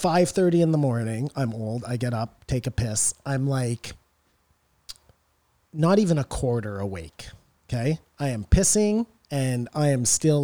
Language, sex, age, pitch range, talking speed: English, male, 30-49, 95-135 Hz, 150 wpm